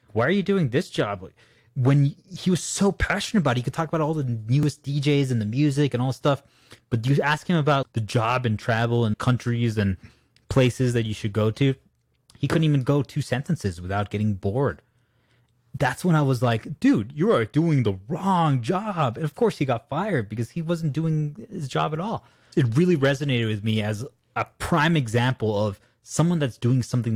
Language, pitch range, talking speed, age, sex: English, 110-150 Hz, 210 wpm, 20-39, male